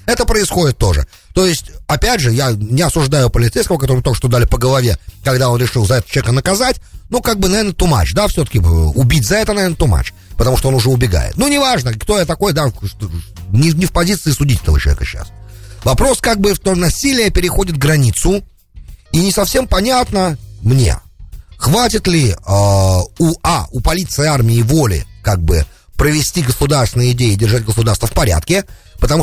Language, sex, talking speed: English, male, 180 wpm